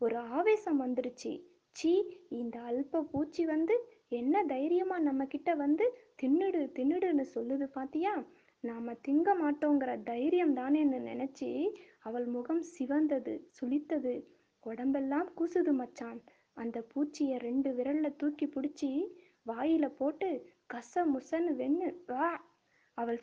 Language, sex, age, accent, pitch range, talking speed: Tamil, female, 20-39, native, 255-315 Hz, 110 wpm